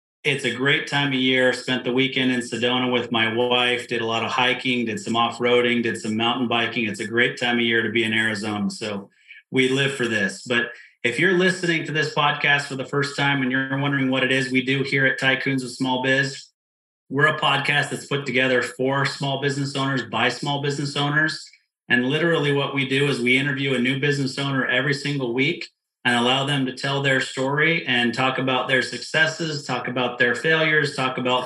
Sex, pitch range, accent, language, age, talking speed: male, 125-140 Hz, American, English, 30-49, 215 wpm